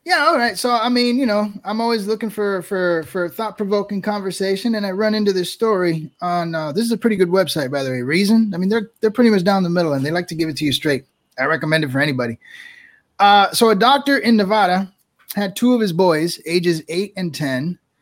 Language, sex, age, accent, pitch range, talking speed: English, male, 20-39, American, 165-215 Hz, 245 wpm